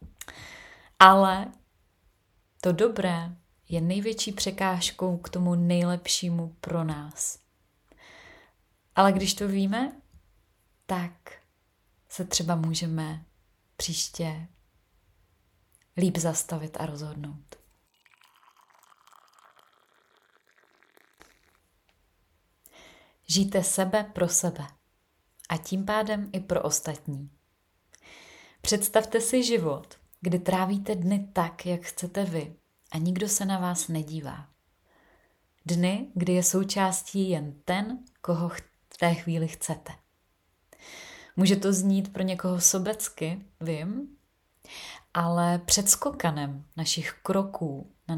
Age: 30-49